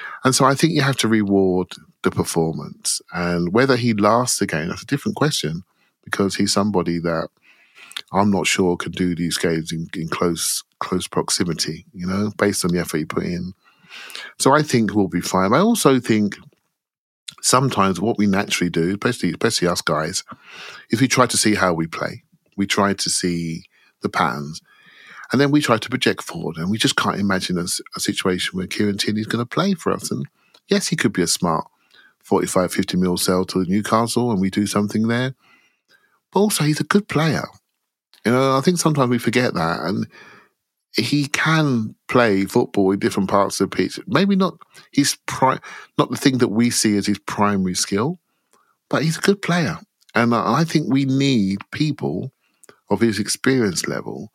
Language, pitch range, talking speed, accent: English, 95-130 Hz, 190 wpm, British